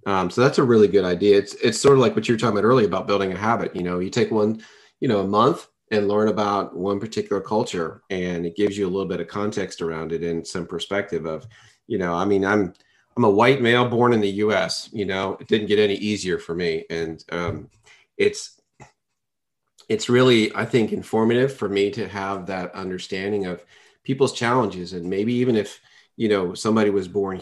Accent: American